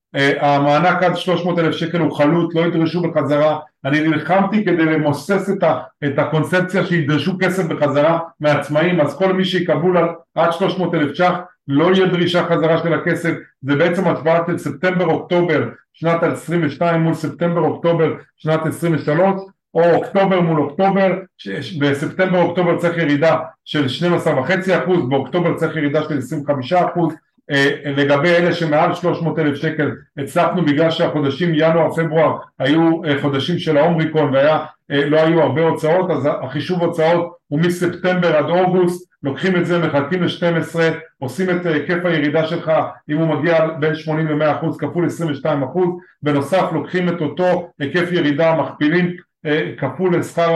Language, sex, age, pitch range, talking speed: Hebrew, male, 40-59, 150-175 Hz, 145 wpm